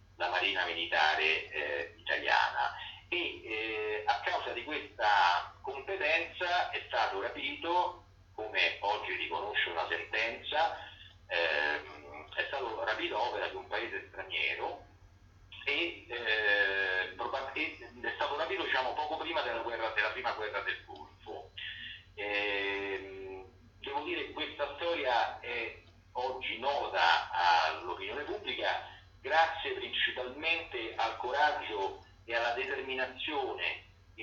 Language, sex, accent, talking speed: Italian, male, native, 110 wpm